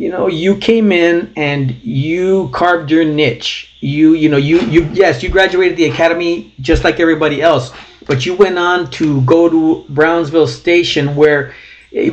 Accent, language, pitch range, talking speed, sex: American, English, 140-170 Hz, 175 wpm, male